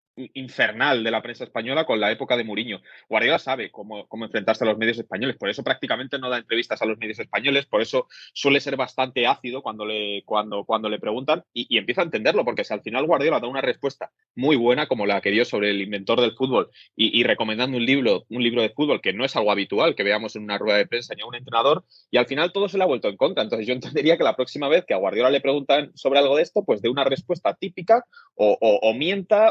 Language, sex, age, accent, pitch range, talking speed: Spanish, male, 20-39, Spanish, 110-145 Hz, 255 wpm